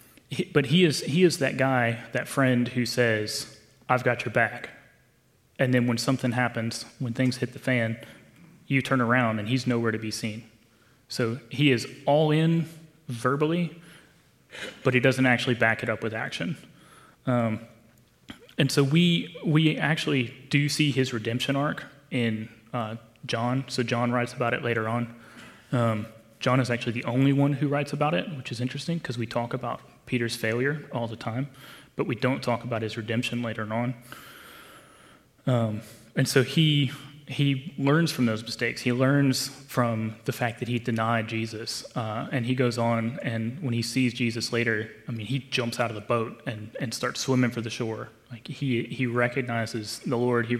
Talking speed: 180 wpm